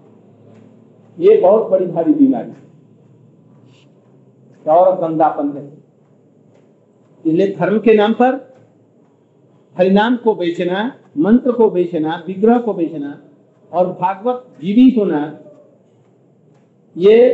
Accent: native